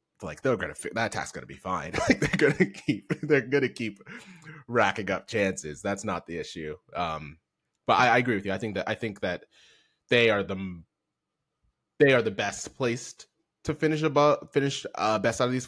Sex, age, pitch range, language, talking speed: male, 20-39, 100-135 Hz, English, 200 wpm